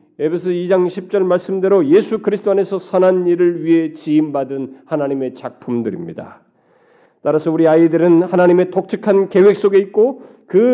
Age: 40-59